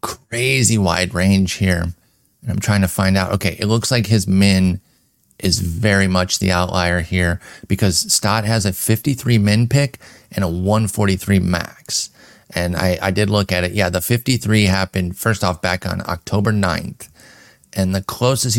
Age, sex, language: 30-49, male, English